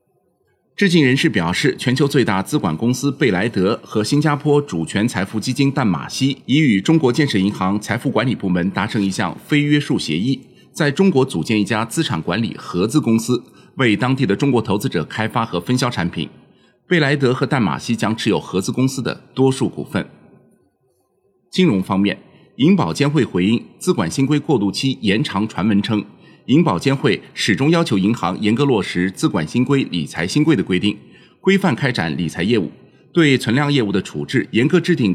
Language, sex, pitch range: Chinese, male, 105-145 Hz